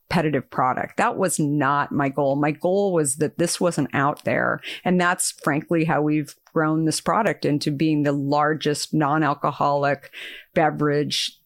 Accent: American